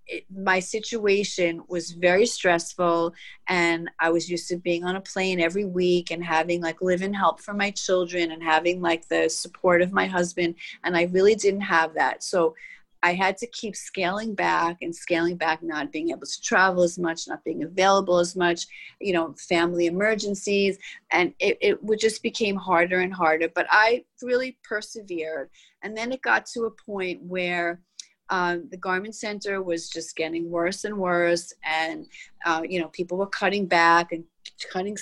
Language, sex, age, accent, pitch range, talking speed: English, female, 30-49, American, 170-205 Hz, 185 wpm